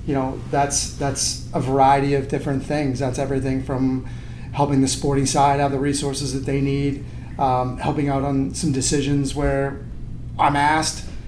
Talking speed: 165 wpm